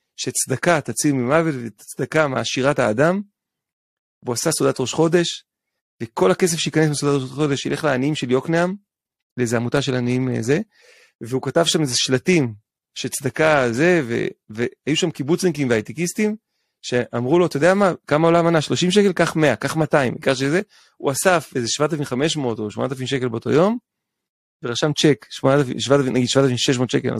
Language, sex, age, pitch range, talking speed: Hebrew, male, 30-49, 130-180 Hz, 150 wpm